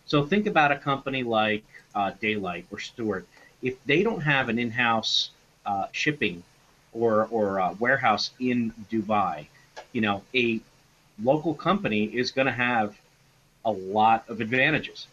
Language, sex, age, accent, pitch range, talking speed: English, male, 40-59, American, 110-150 Hz, 145 wpm